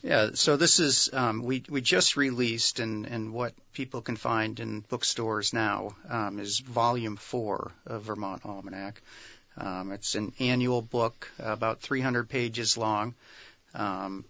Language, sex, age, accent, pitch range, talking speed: English, male, 40-59, American, 110-125 Hz, 145 wpm